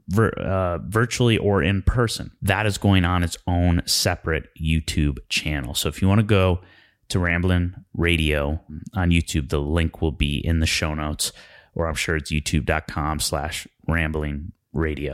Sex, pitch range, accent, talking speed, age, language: male, 80-100 Hz, American, 165 wpm, 30-49, English